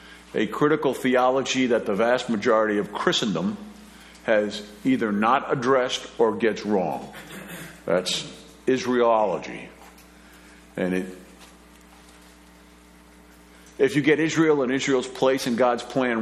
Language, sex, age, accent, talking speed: English, male, 50-69, American, 105 wpm